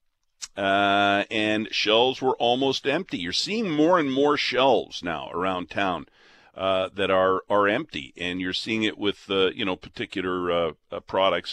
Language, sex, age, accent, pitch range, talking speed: English, male, 50-69, American, 95-145 Hz, 165 wpm